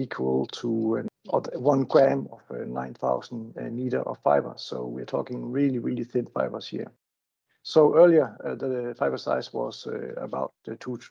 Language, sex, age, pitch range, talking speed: English, male, 60-79, 115-145 Hz, 150 wpm